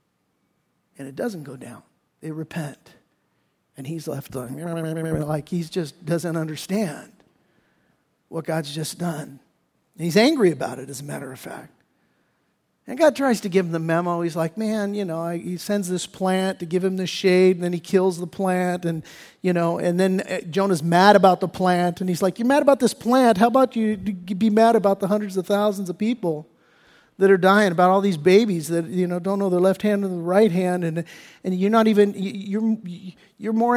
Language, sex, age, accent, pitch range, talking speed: English, male, 50-69, American, 170-215 Hz, 200 wpm